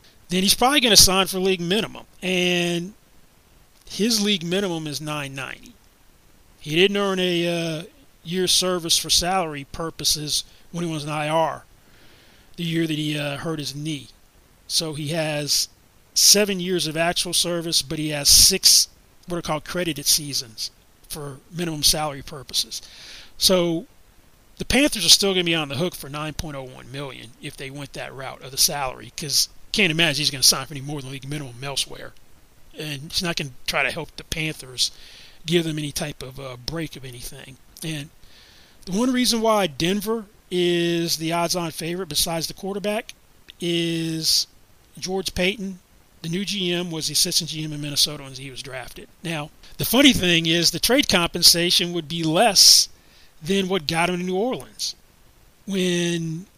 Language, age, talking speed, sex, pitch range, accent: English, 30-49, 175 wpm, male, 145-180 Hz, American